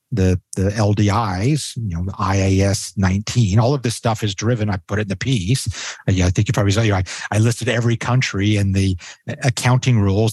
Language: English